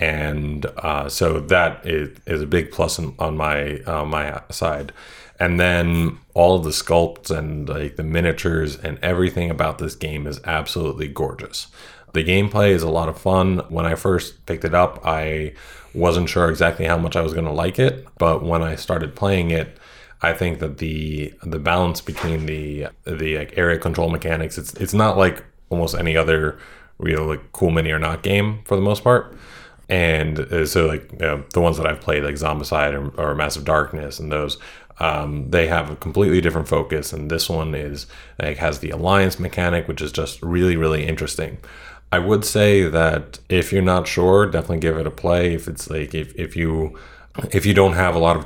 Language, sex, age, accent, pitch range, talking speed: English, male, 30-49, American, 80-90 Hz, 200 wpm